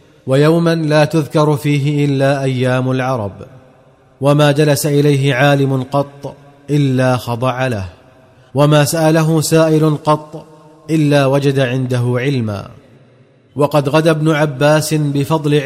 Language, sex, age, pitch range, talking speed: Arabic, male, 30-49, 135-150 Hz, 105 wpm